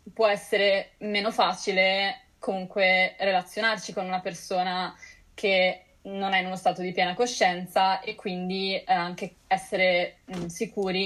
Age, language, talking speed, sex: 20-39, Italian, 125 wpm, female